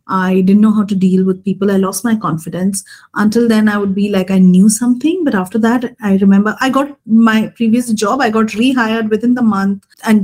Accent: Indian